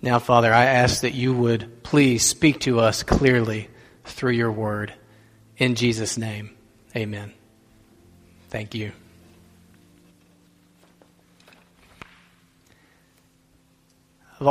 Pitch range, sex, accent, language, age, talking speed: 115-140 Hz, male, American, English, 40-59, 90 wpm